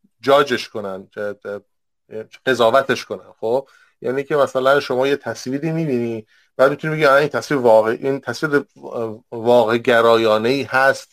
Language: Persian